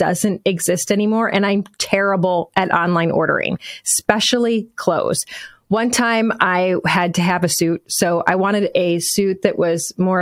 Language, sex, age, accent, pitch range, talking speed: English, female, 30-49, American, 180-220 Hz, 160 wpm